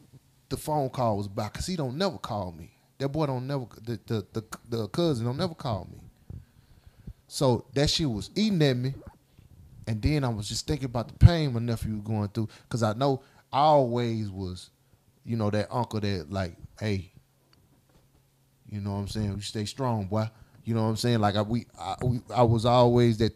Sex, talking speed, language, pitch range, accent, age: male, 210 wpm, English, 105-130 Hz, American, 30-49